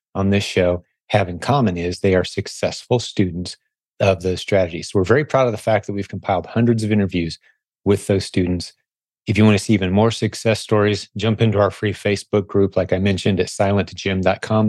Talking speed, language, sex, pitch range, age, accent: 205 wpm, English, male, 100-120 Hz, 30-49, American